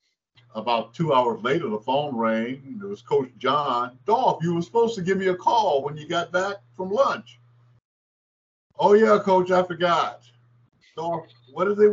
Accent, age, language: American, 60-79, English